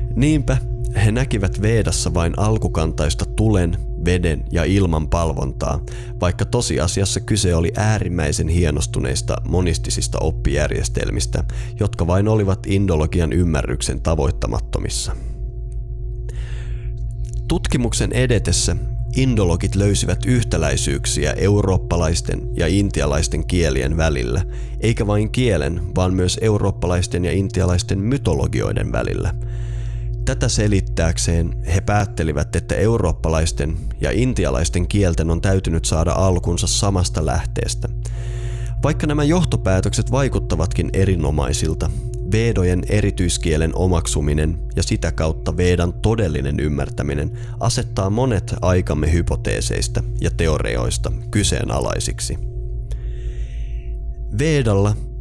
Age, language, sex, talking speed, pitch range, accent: 30-49, Finnish, male, 90 wpm, 80-115 Hz, native